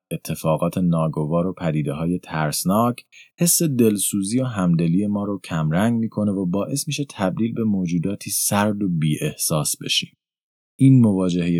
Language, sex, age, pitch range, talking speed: Persian, male, 30-49, 95-140 Hz, 140 wpm